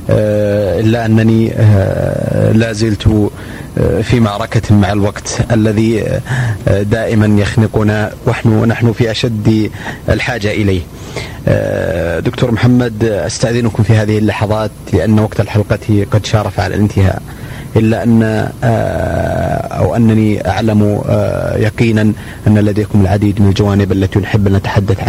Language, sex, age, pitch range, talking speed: Arabic, male, 30-49, 105-115 Hz, 105 wpm